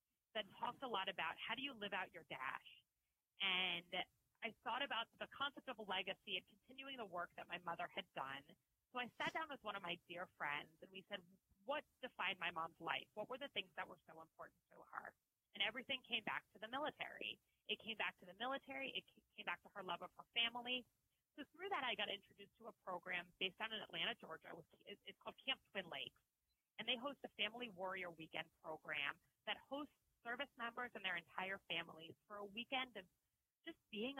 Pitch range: 175-245 Hz